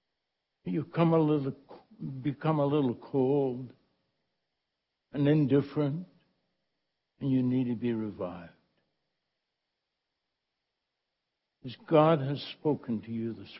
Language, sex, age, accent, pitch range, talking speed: English, male, 60-79, American, 115-160 Hz, 100 wpm